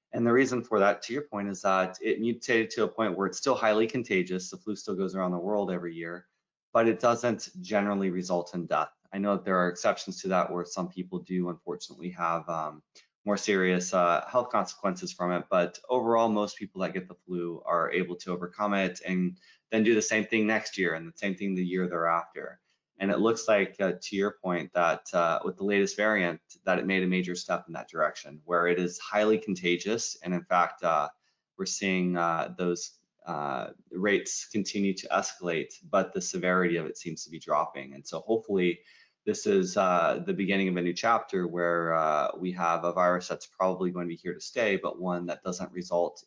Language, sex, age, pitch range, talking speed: English, male, 20-39, 85-100 Hz, 215 wpm